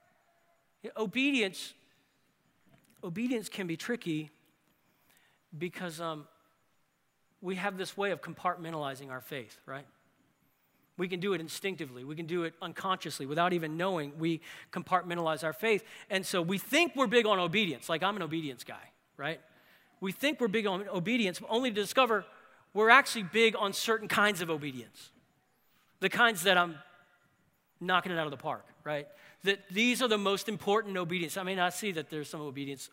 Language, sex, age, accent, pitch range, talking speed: English, male, 40-59, American, 150-195 Hz, 170 wpm